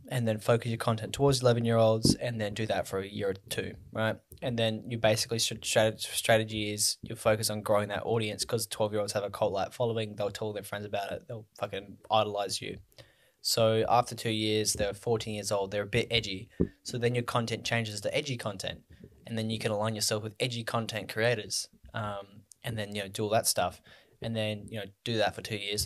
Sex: male